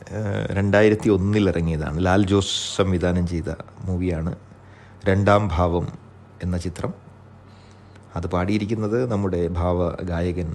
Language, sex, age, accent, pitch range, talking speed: Malayalam, male, 30-49, native, 100-150 Hz, 90 wpm